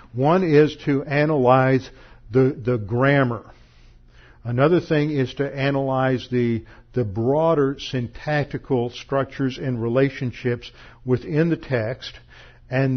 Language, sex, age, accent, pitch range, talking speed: English, male, 50-69, American, 120-145 Hz, 105 wpm